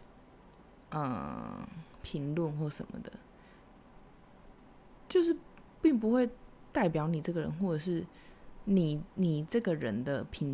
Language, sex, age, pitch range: Chinese, female, 20-39, 155-200 Hz